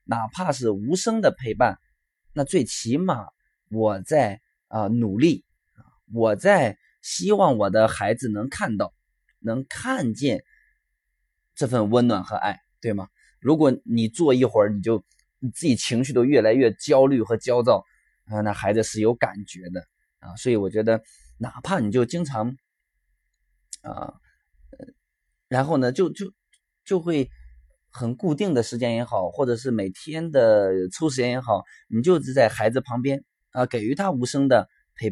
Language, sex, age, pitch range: Chinese, male, 20-39, 110-135 Hz